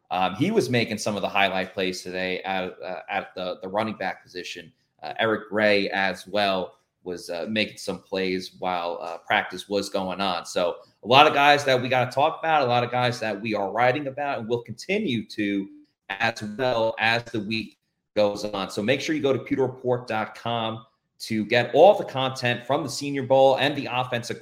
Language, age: English, 30-49